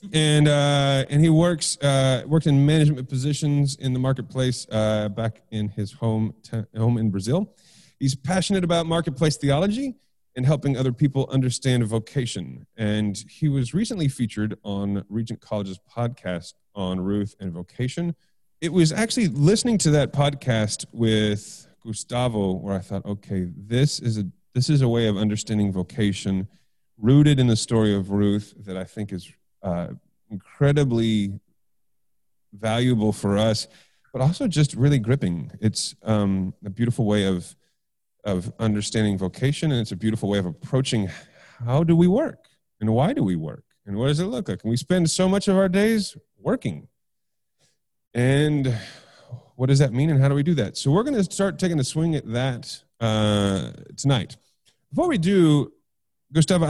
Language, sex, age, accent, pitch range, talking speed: English, male, 30-49, American, 105-150 Hz, 165 wpm